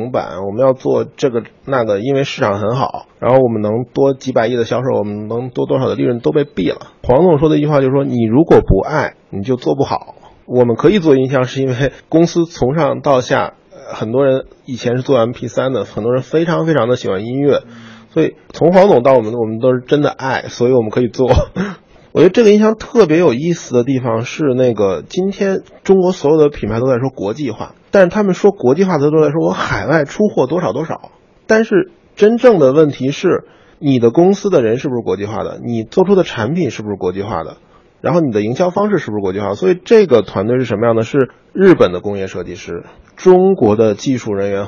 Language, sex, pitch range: Chinese, male, 115-170 Hz